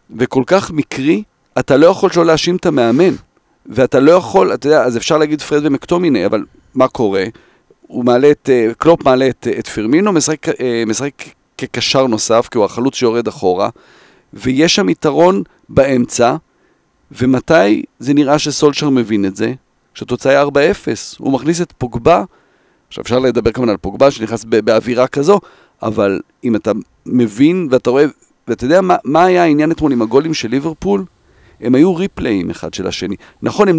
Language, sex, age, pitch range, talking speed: Hebrew, male, 40-59, 125-180 Hz, 165 wpm